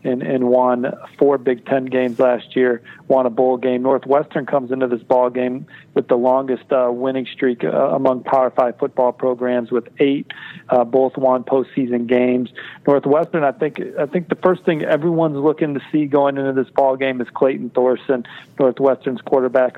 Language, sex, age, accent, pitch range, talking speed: English, male, 40-59, American, 125-145 Hz, 180 wpm